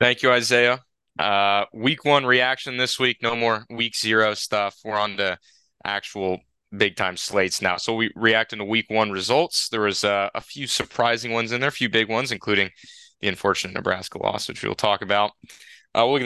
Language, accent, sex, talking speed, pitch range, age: English, American, male, 205 wpm, 100-125 Hz, 20-39